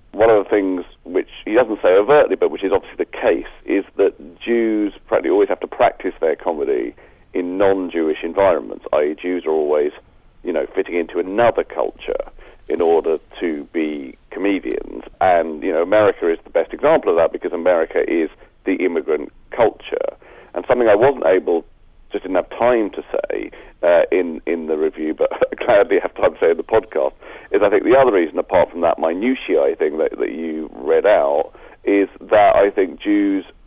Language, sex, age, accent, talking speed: English, male, 40-59, British, 190 wpm